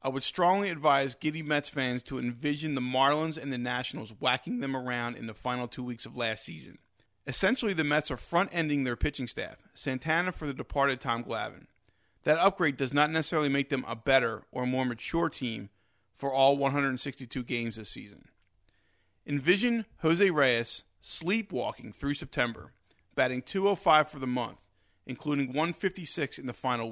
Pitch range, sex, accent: 120-160 Hz, male, American